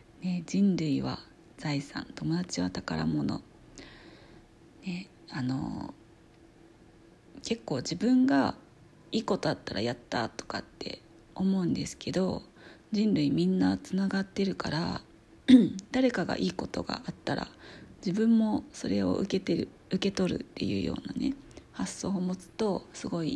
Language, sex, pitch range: Japanese, female, 160-205 Hz